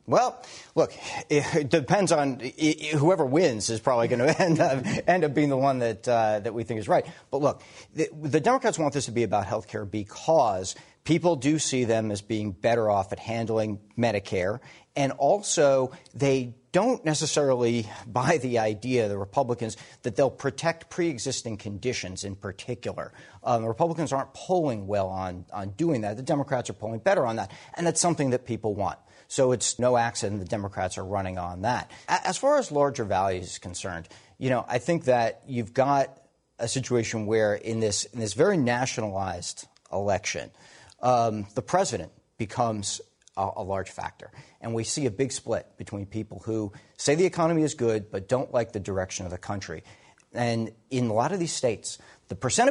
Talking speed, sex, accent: 185 wpm, male, American